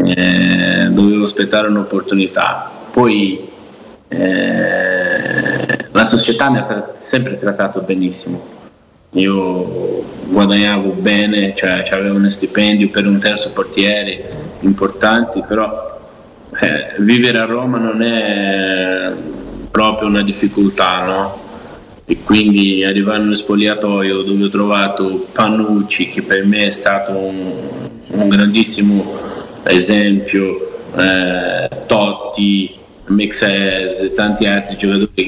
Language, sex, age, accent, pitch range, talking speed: Italian, male, 20-39, native, 95-105 Hz, 105 wpm